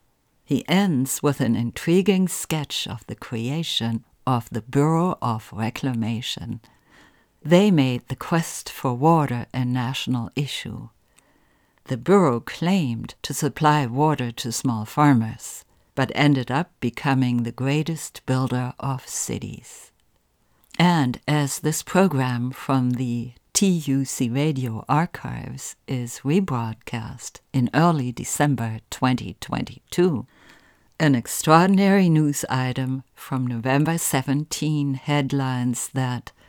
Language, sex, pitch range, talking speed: English, female, 120-155 Hz, 105 wpm